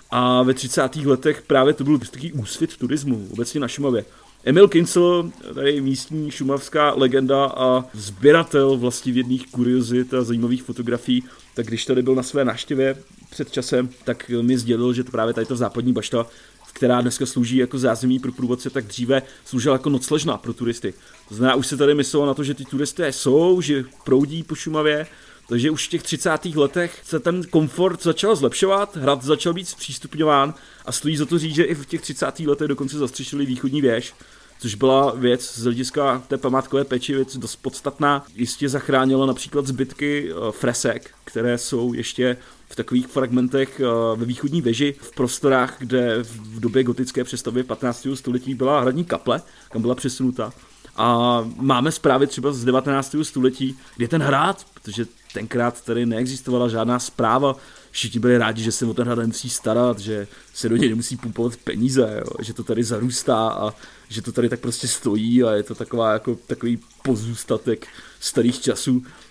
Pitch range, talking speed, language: 120-145 Hz, 170 wpm, Czech